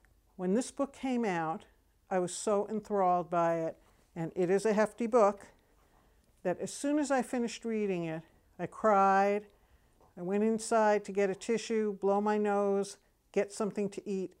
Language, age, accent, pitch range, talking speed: English, 60-79, American, 170-200 Hz, 170 wpm